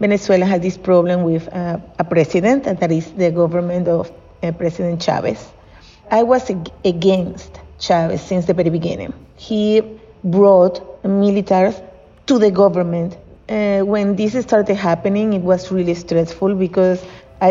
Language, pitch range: English, 175-200 Hz